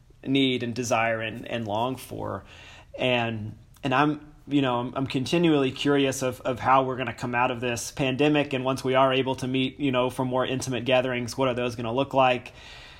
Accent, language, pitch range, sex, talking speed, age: American, English, 120-135 Hz, male, 205 wpm, 30-49